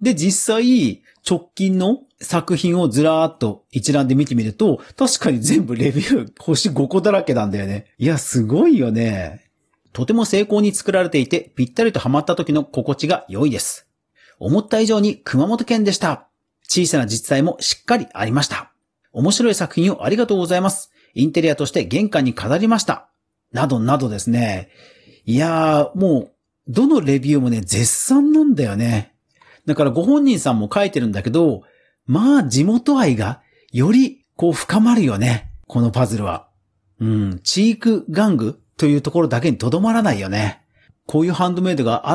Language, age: Japanese, 40-59